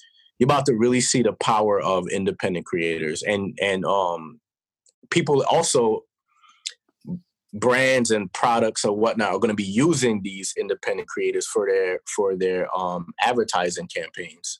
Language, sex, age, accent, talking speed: English, male, 20-39, American, 140 wpm